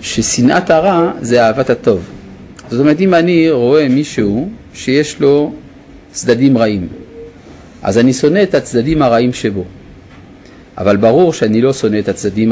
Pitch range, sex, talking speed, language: 100-155 Hz, male, 140 wpm, Hebrew